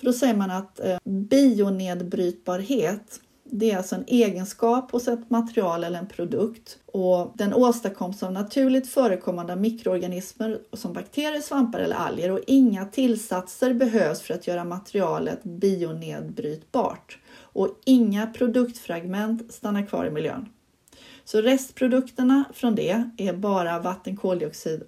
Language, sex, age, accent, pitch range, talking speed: Swedish, female, 30-49, native, 185-240 Hz, 130 wpm